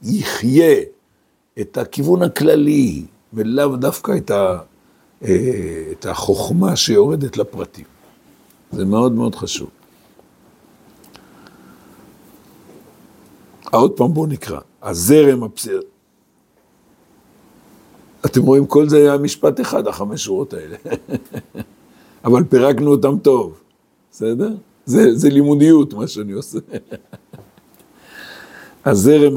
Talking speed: 85 wpm